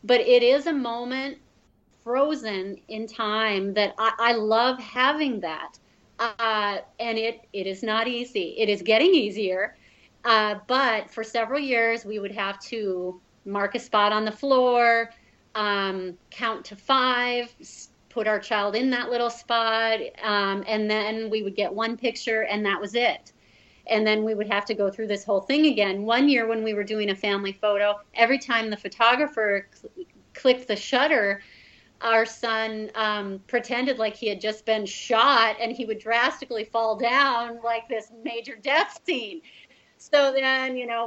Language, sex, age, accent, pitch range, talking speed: English, female, 30-49, American, 210-255 Hz, 170 wpm